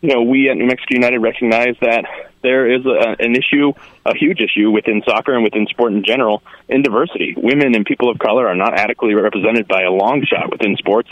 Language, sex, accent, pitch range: English, male, American, 115-135 Hz